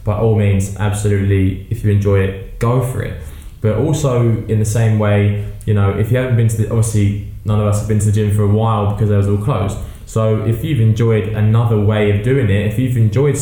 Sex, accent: male, British